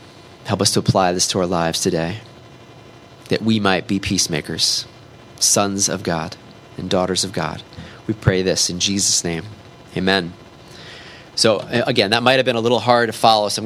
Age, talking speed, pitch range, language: 30-49, 180 wpm, 100-125 Hz, English